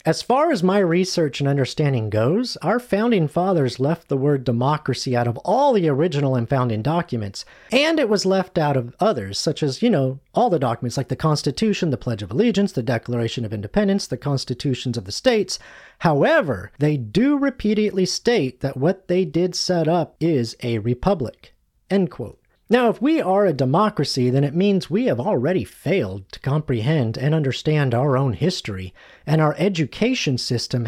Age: 40-59